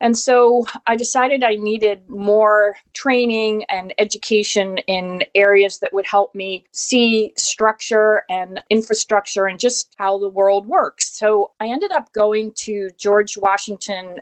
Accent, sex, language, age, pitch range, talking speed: American, female, English, 40-59, 185-220 Hz, 145 wpm